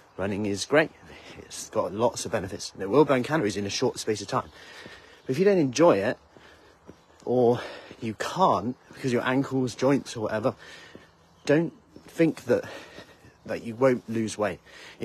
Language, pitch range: English, 110-135 Hz